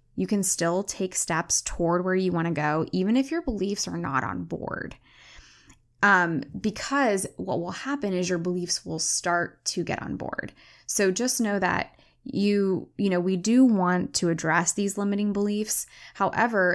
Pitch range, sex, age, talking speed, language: 170-205 Hz, female, 10-29, 175 wpm, English